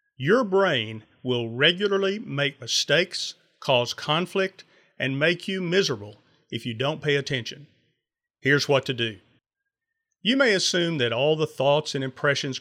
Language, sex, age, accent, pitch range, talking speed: English, male, 40-59, American, 130-175 Hz, 145 wpm